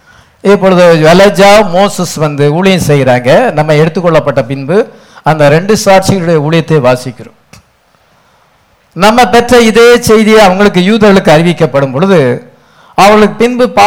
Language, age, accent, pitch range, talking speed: English, 50-69, Indian, 160-220 Hz, 60 wpm